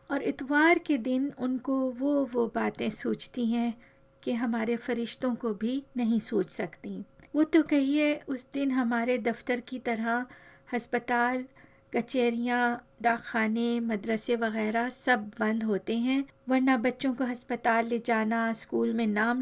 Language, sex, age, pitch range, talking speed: Hindi, female, 40-59, 225-255 Hz, 140 wpm